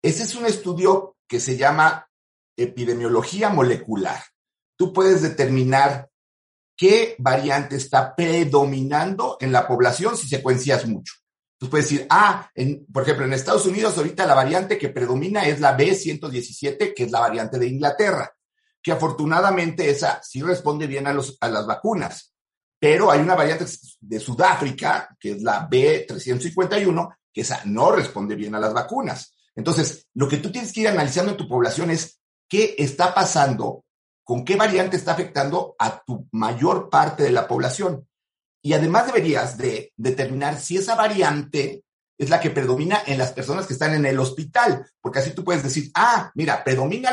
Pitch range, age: 135-190 Hz, 50-69